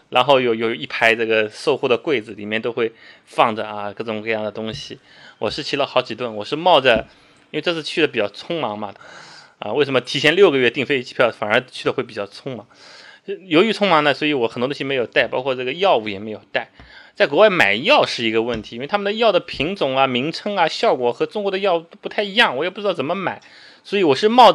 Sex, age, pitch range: male, 20-39, 115-185 Hz